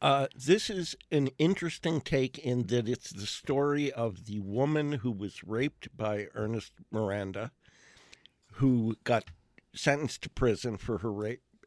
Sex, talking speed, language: male, 145 wpm, English